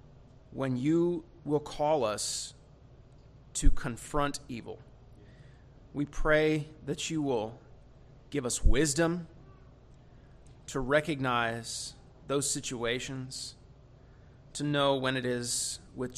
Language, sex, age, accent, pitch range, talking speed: English, male, 30-49, American, 125-140 Hz, 95 wpm